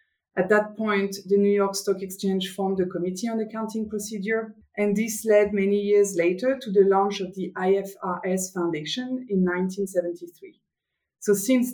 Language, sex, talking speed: English, female, 160 wpm